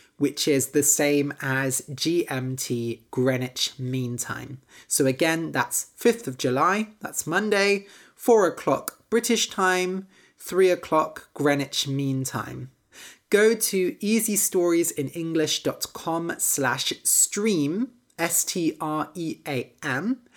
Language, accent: English, British